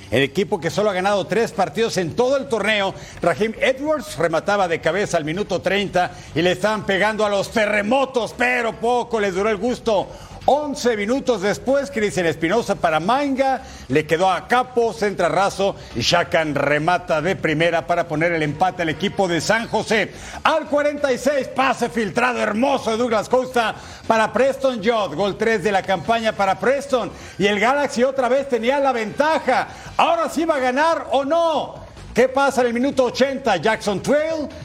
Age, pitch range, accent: 50-69, 190-250 Hz, Mexican